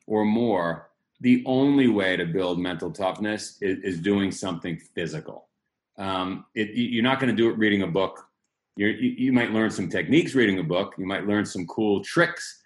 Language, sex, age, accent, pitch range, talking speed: English, male, 40-59, American, 100-130 Hz, 185 wpm